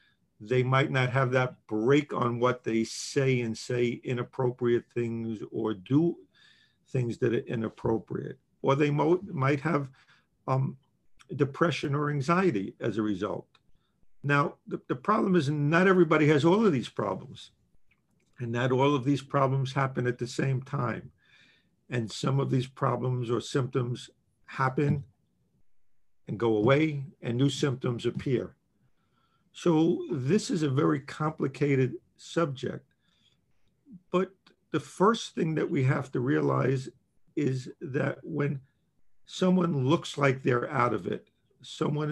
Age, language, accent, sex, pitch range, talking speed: 50-69, English, American, male, 125-150 Hz, 135 wpm